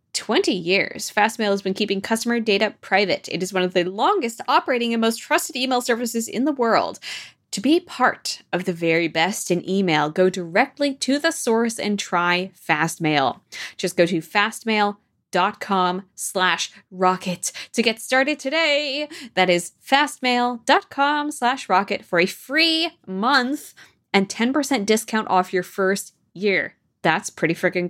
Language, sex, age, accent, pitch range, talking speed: English, female, 20-39, American, 180-250 Hz, 155 wpm